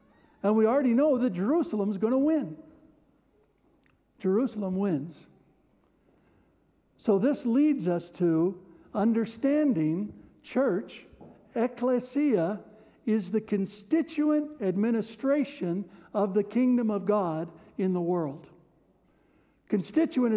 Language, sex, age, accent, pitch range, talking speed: English, male, 60-79, American, 205-275 Hz, 95 wpm